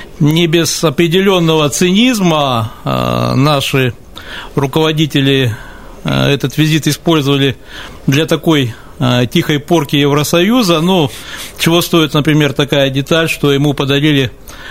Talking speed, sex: 110 wpm, male